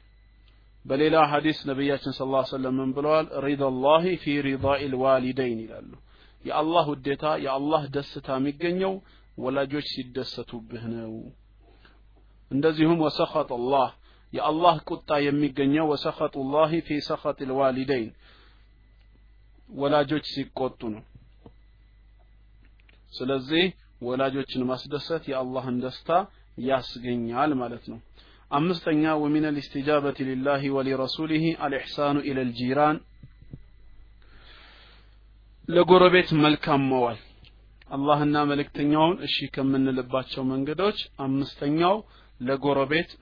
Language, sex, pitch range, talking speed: Amharic, male, 115-150 Hz, 95 wpm